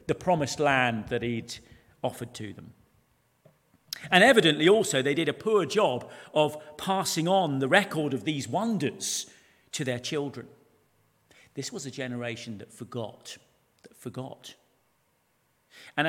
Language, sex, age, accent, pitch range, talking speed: English, male, 40-59, British, 130-195 Hz, 135 wpm